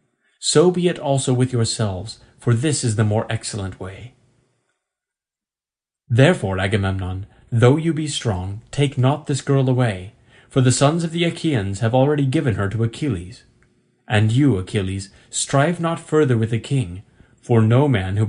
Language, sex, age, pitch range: Korean, male, 30-49, 110-135 Hz